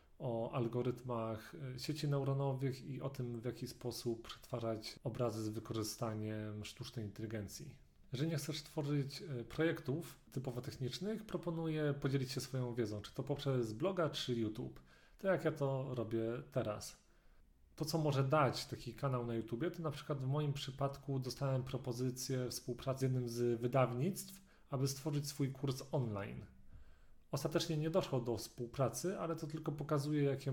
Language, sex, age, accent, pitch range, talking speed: Polish, male, 30-49, native, 115-145 Hz, 150 wpm